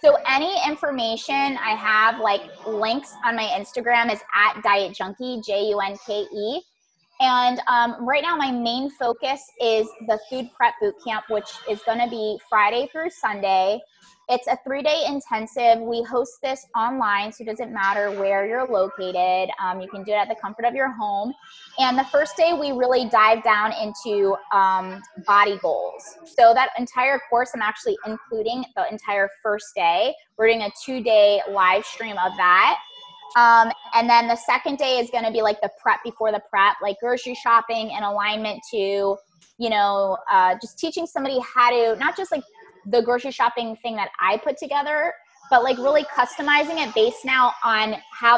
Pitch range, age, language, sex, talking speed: 210-260 Hz, 20-39, English, female, 175 wpm